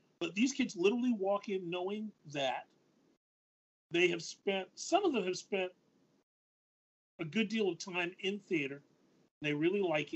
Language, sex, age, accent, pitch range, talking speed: English, male, 40-59, American, 155-205 Hz, 155 wpm